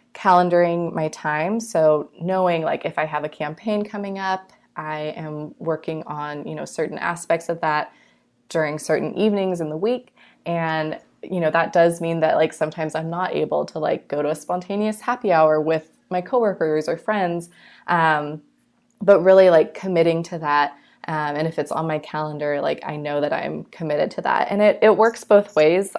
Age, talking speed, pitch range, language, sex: 20-39, 190 wpm, 155-195 Hz, English, female